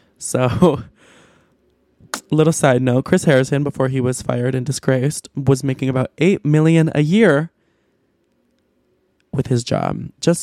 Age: 20-39